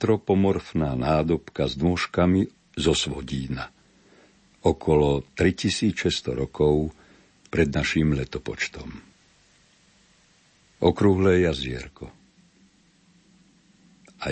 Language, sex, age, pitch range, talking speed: Slovak, male, 60-79, 75-95 Hz, 65 wpm